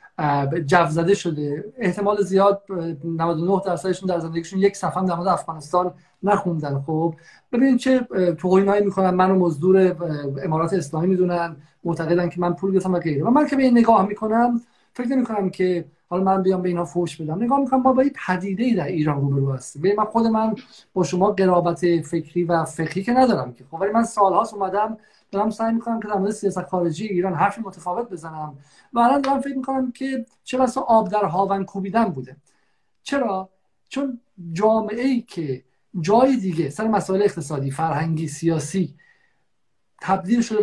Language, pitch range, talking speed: Persian, 170-230 Hz, 170 wpm